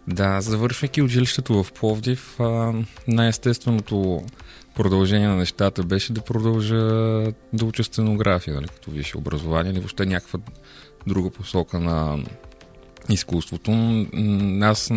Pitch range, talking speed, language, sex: 90-110 Hz, 105 wpm, Bulgarian, male